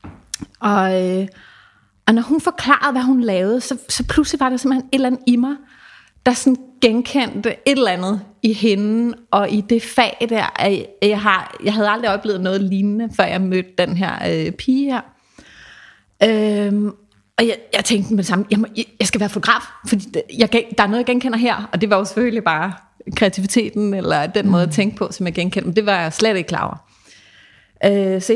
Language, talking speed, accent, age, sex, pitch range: Danish, 205 wpm, native, 30-49, female, 190-245 Hz